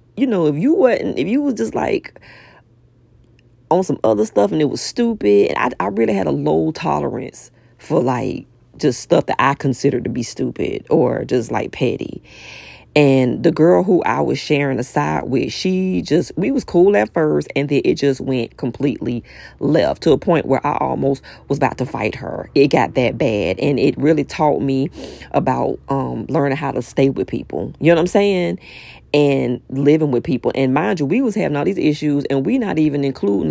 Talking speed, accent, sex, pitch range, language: 205 wpm, American, female, 120-185 Hz, English